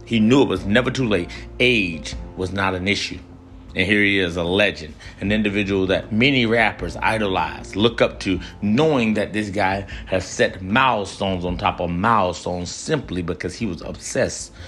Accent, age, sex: American, 30-49, male